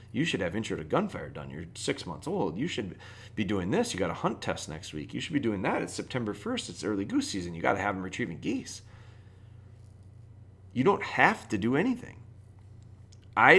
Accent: American